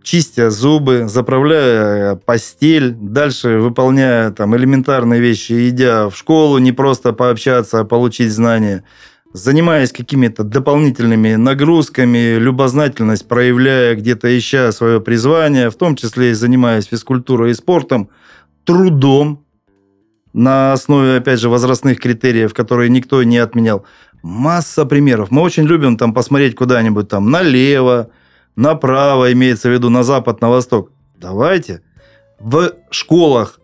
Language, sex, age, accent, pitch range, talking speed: Russian, male, 30-49, native, 120-150 Hz, 120 wpm